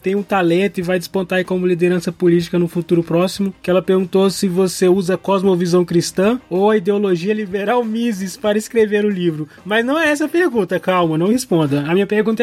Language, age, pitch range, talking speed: Portuguese, 20-39, 175-215 Hz, 210 wpm